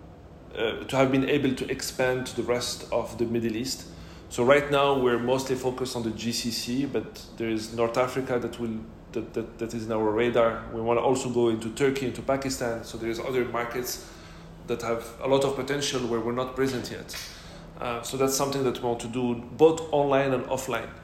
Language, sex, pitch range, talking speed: English, male, 115-130 Hz, 210 wpm